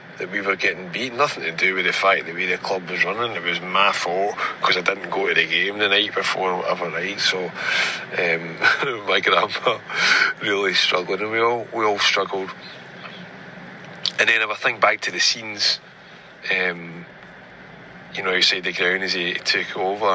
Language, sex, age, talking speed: English, male, 30-49, 195 wpm